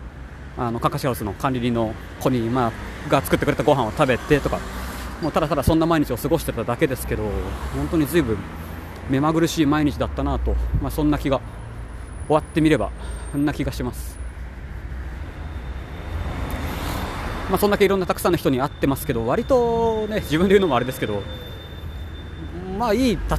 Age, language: 30-49, Japanese